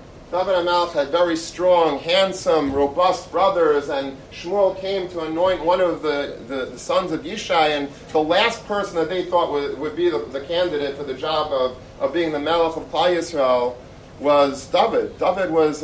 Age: 40-59